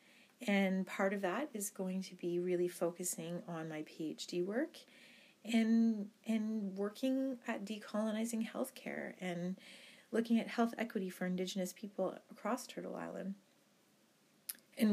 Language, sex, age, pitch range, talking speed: English, female, 30-49, 180-230 Hz, 135 wpm